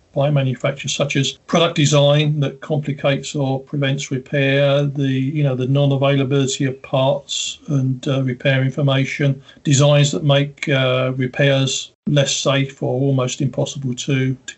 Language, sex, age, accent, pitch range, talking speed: English, male, 40-59, British, 135-165 Hz, 140 wpm